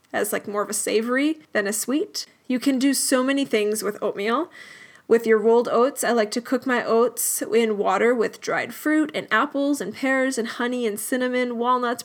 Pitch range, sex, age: 215-255 Hz, female, 10-29